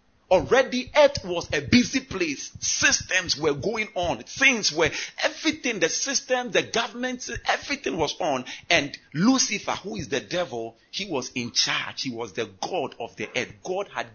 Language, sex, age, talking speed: English, male, 50-69, 165 wpm